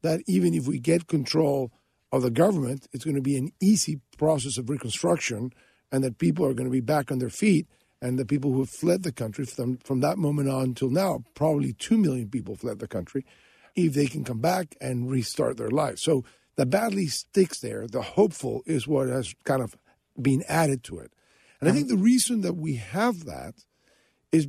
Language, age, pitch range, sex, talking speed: English, 50-69, 135-170 Hz, male, 210 wpm